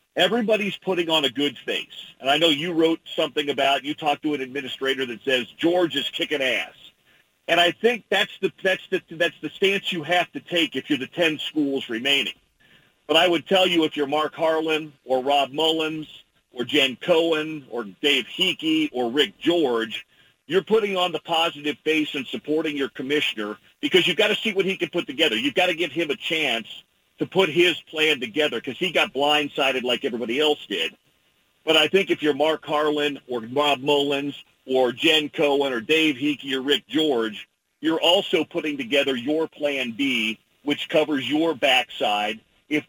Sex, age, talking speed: male, 50-69, 190 wpm